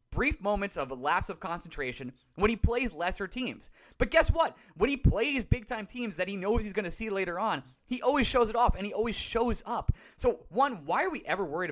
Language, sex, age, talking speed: English, male, 20-39, 230 wpm